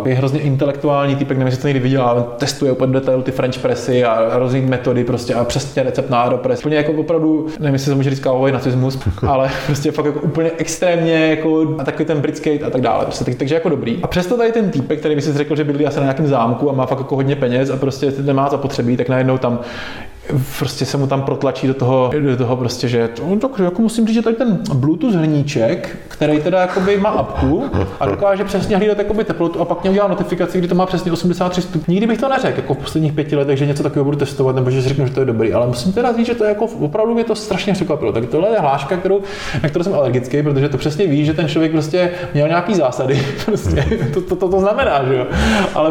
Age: 20-39